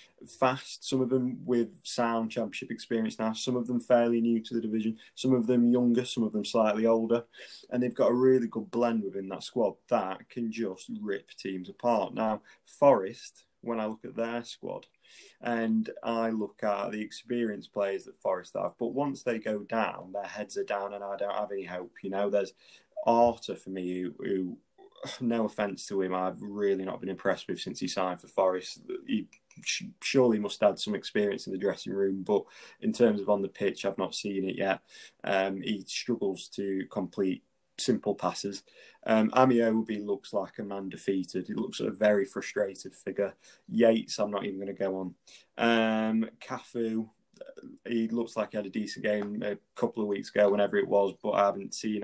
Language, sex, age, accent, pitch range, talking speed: English, male, 20-39, British, 100-115 Hz, 195 wpm